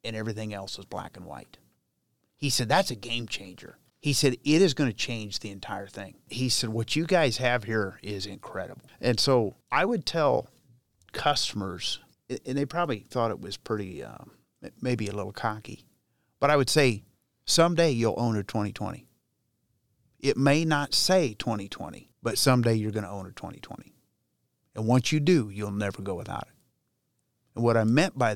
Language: English